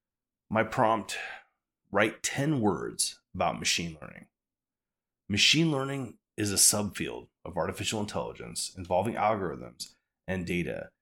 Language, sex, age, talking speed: English, male, 30-49, 110 wpm